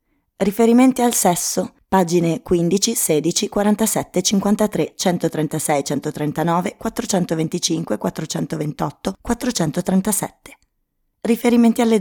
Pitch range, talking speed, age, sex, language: 155-215 Hz, 75 wpm, 20-39, female, Italian